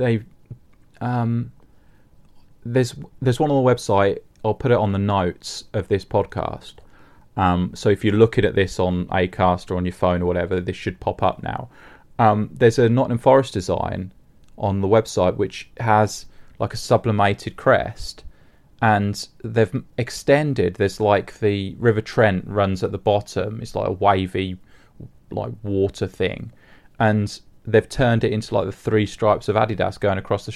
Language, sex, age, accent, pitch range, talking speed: English, male, 30-49, British, 95-120 Hz, 165 wpm